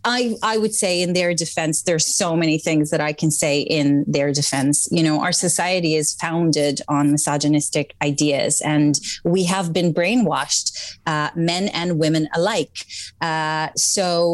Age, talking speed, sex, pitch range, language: 30-49, 165 wpm, female, 155-185 Hz, English